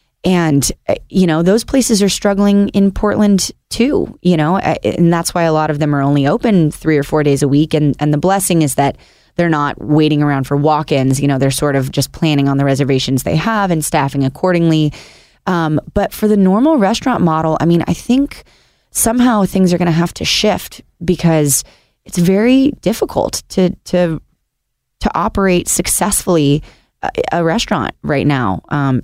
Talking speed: 180 wpm